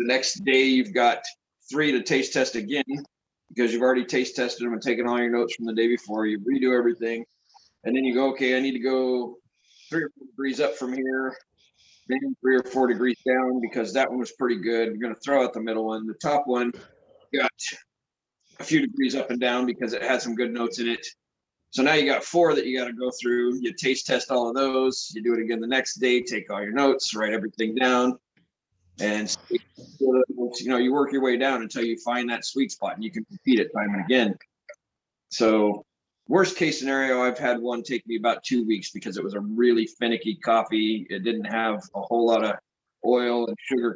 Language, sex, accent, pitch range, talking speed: English, male, American, 115-130 Hz, 225 wpm